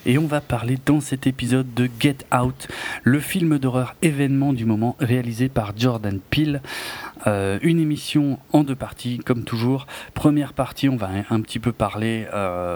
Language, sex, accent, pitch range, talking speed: French, male, French, 115-135 Hz, 175 wpm